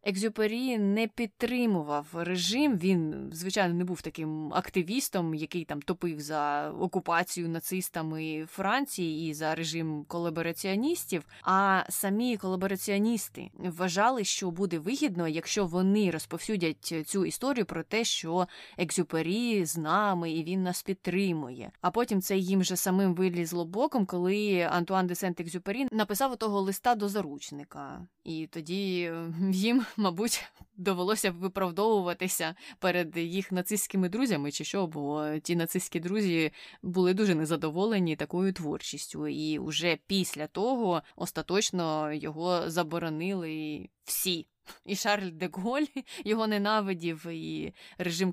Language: Ukrainian